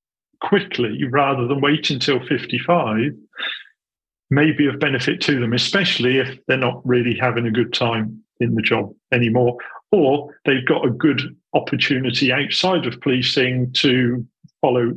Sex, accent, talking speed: male, British, 145 wpm